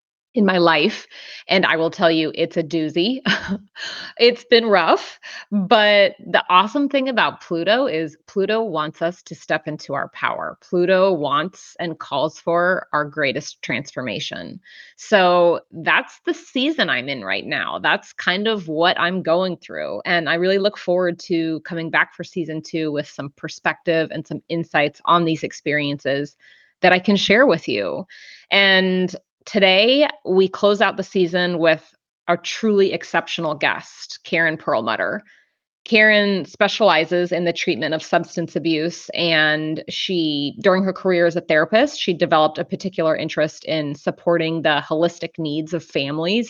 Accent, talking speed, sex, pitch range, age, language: American, 155 wpm, female, 155-190 Hz, 30-49, English